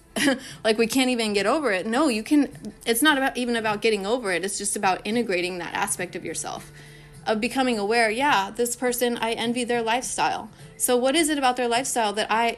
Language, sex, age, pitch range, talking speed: English, female, 30-49, 205-250 Hz, 215 wpm